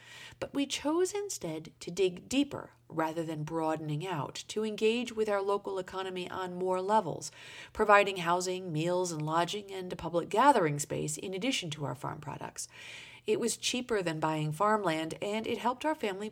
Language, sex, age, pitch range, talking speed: English, female, 50-69, 160-235 Hz, 175 wpm